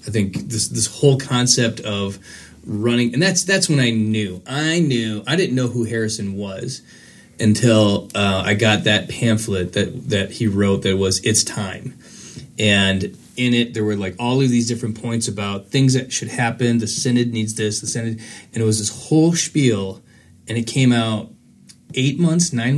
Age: 30-49